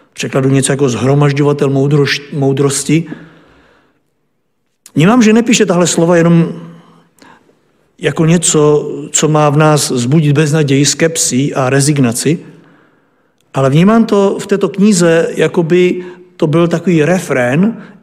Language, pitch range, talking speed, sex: Czech, 145-185 Hz, 115 wpm, male